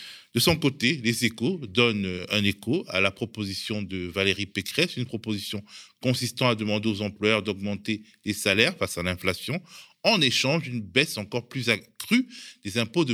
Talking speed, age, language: 165 wpm, 20-39, French